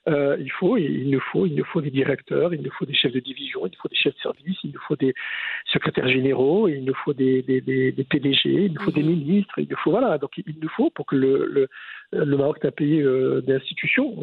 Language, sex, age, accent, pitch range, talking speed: English, male, 50-69, French, 140-180 Hz, 265 wpm